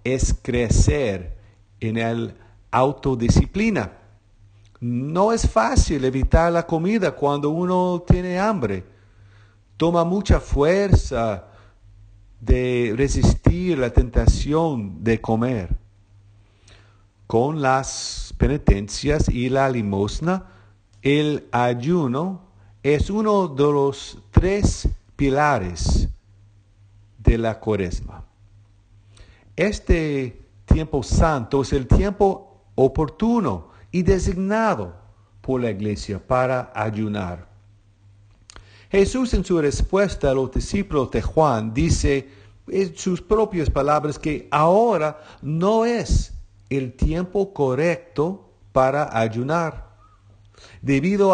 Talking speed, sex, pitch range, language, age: 90 wpm, male, 100-160 Hz, English, 50-69